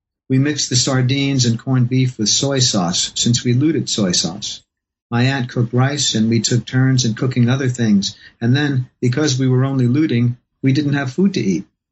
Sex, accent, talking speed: male, American, 200 wpm